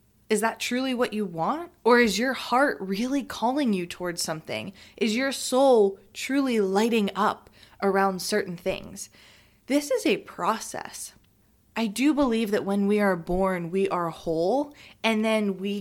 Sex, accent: female, American